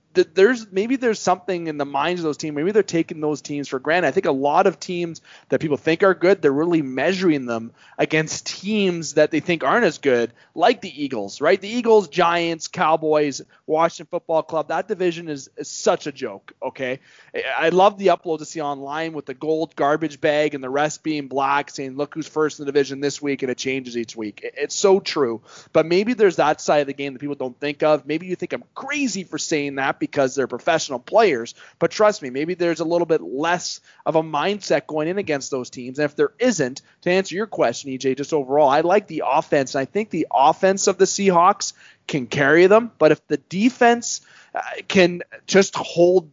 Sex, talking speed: male, 220 wpm